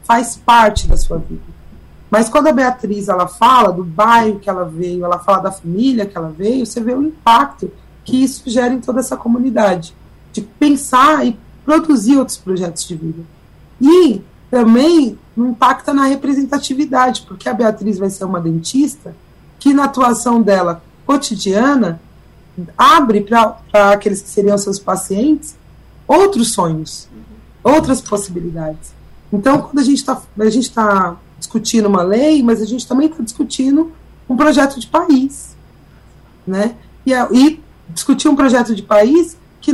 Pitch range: 195-260 Hz